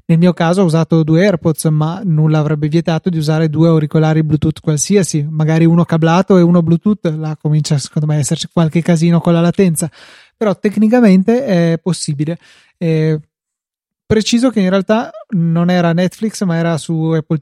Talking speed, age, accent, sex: 170 wpm, 30-49, native, male